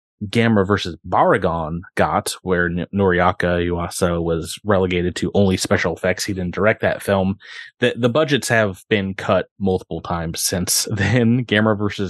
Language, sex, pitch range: English, male, 95-125 Hz